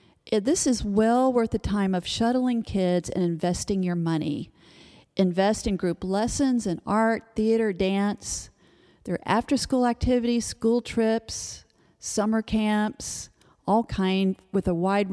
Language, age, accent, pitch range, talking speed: English, 40-59, American, 185-225 Hz, 140 wpm